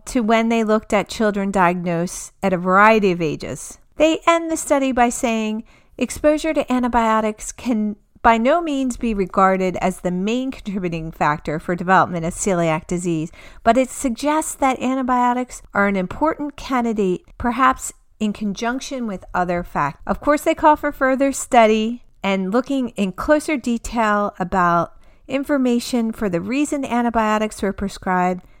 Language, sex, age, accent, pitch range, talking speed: English, female, 40-59, American, 190-255 Hz, 150 wpm